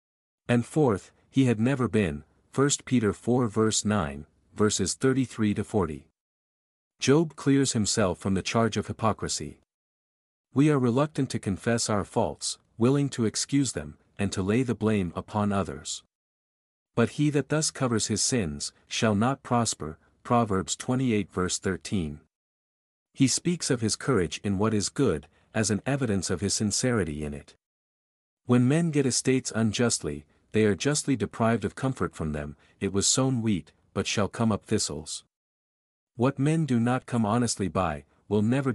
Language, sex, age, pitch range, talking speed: English, male, 50-69, 95-125 Hz, 160 wpm